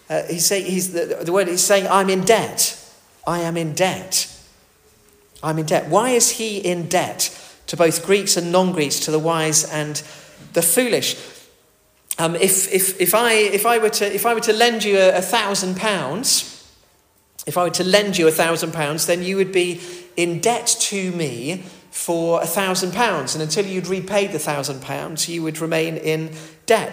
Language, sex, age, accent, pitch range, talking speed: English, male, 40-59, British, 150-185 Hz, 195 wpm